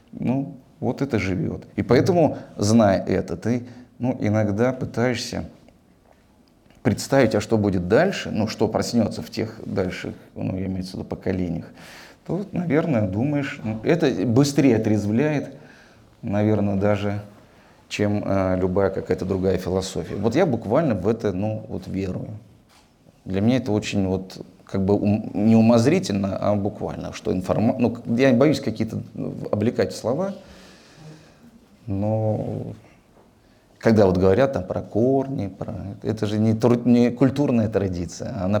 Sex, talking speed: male, 135 wpm